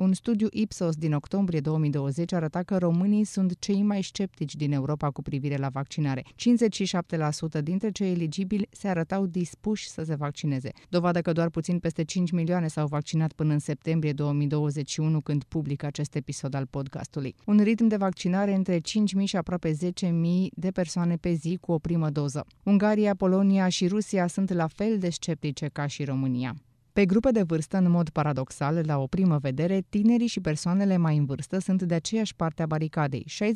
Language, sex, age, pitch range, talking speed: Romanian, female, 20-39, 150-190 Hz, 180 wpm